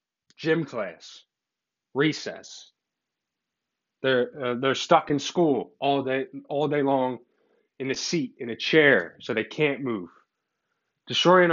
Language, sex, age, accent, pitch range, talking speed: English, male, 20-39, American, 135-170 Hz, 130 wpm